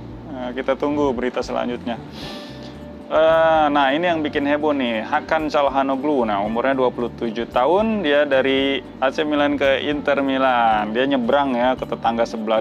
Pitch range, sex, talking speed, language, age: 120-155 Hz, male, 150 wpm, Indonesian, 20-39